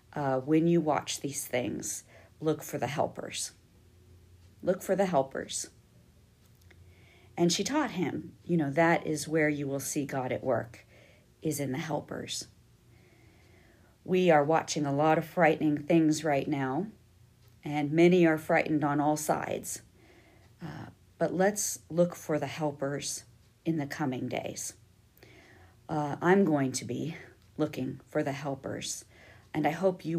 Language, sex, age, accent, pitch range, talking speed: English, female, 50-69, American, 135-170 Hz, 145 wpm